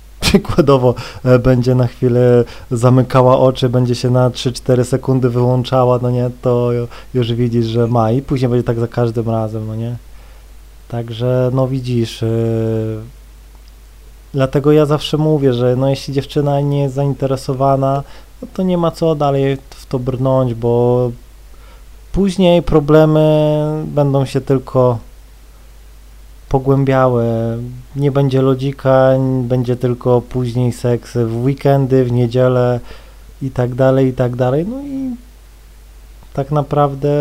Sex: male